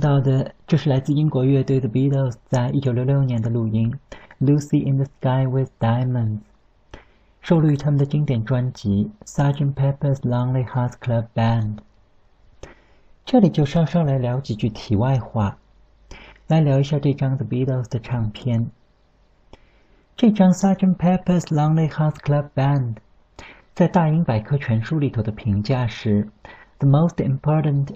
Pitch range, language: 115-145 Hz, Chinese